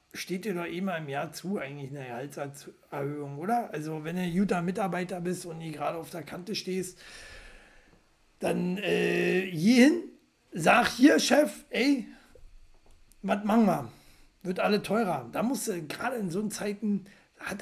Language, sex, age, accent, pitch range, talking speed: German, male, 60-79, German, 165-240 Hz, 165 wpm